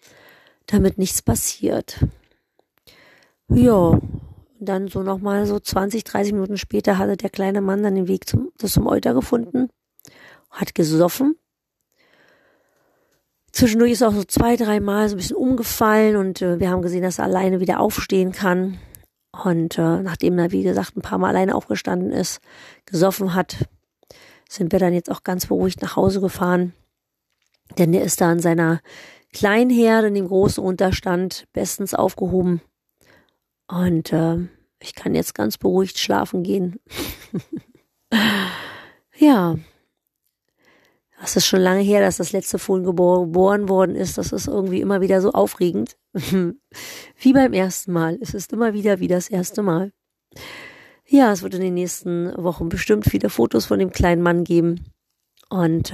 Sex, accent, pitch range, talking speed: female, German, 175-205 Hz, 150 wpm